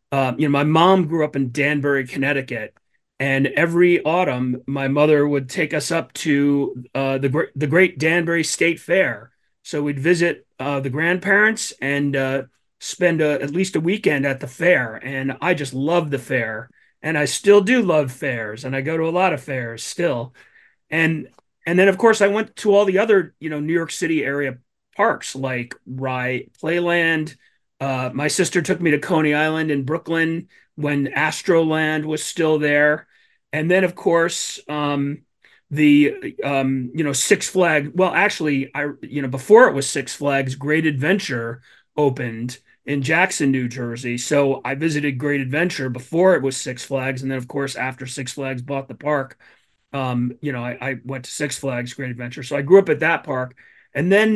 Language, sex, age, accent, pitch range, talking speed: English, male, 30-49, American, 135-165 Hz, 190 wpm